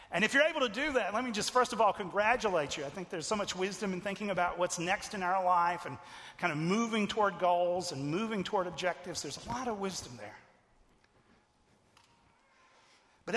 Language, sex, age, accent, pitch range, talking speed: English, male, 40-59, American, 175-220 Hz, 205 wpm